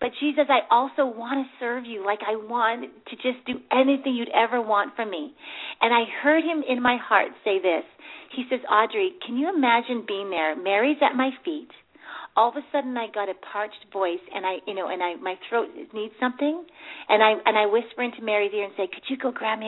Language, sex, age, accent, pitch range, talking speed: English, female, 40-59, American, 210-280 Hz, 230 wpm